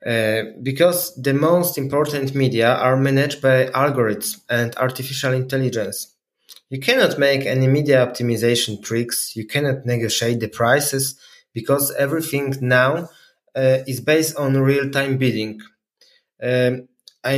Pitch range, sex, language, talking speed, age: 120-140 Hz, male, German, 120 wpm, 20-39